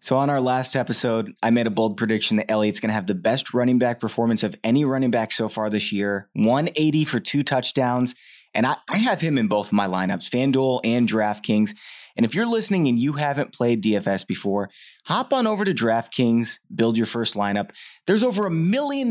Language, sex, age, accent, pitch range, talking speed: English, male, 20-39, American, 105-155 Hz, 215 wpm